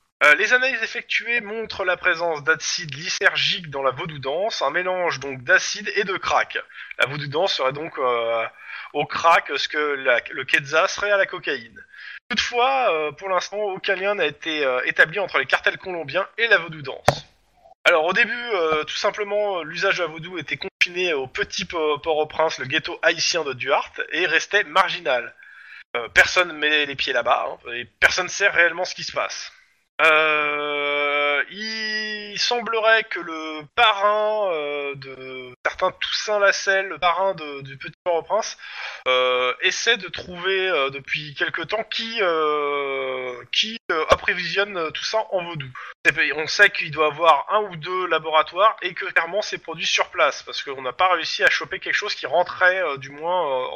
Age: 20-39